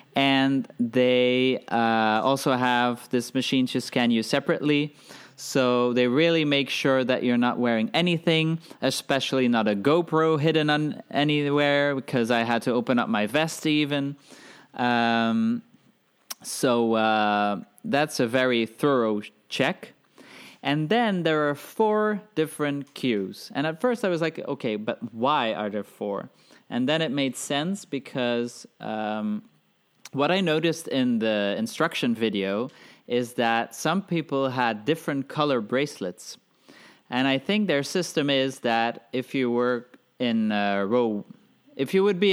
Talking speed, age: 145 wpm, 20-39